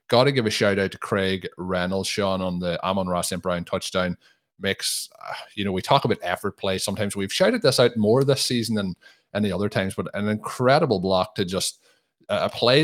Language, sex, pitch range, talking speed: English, male, 90-105 Hz, 220 wpm